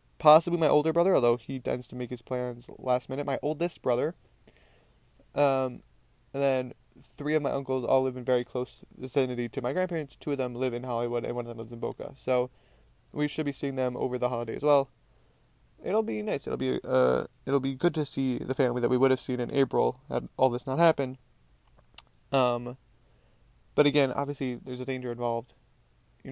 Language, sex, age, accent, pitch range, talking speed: English, male, 20-39, American, 125-140 Hz, 205 wpm